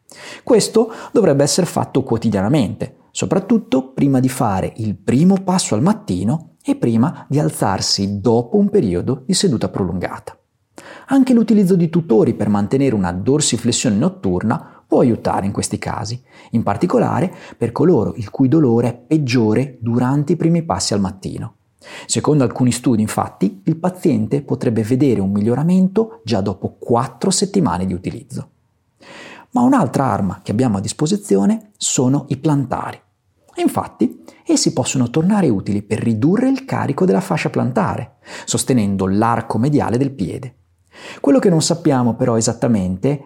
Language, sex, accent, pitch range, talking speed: Italian, male, native, 115-185 Hz, 140 wpm